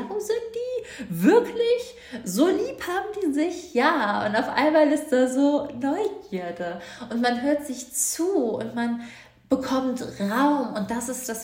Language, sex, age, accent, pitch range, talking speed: German, female, 20-39, German, 175-220 Hz, 155 wpm